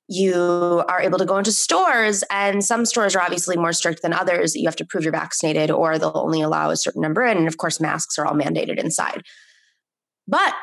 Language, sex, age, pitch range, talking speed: English, female, 20-39, 175-230 Hz, 215 wpm